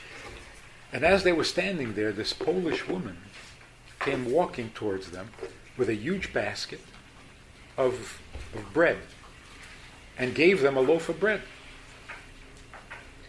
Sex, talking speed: male, 125 wpm